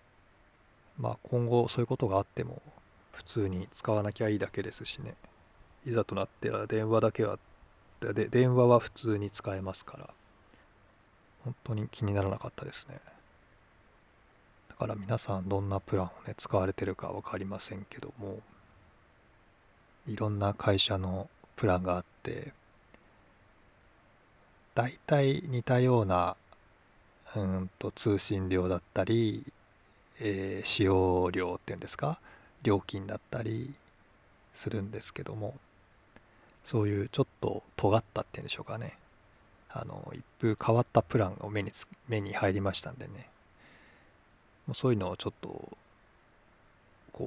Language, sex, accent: Japanese, male, native